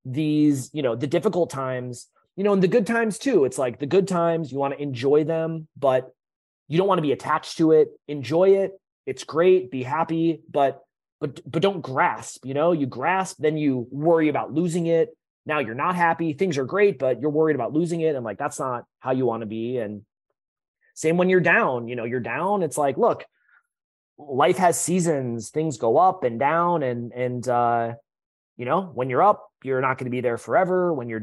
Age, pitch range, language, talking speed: 30-49, 125-165 Hz, English, 215 wpm